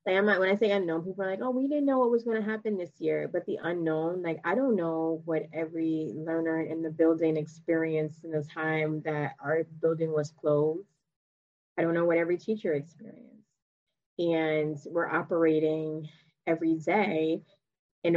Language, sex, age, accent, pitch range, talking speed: English, female, 20-39, American, 155-180 Hz, 180 wpm